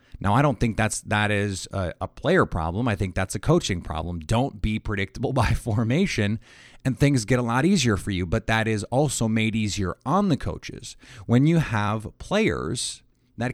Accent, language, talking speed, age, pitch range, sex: American, English, 195 wpm, 30-49, 95-120 Hz, male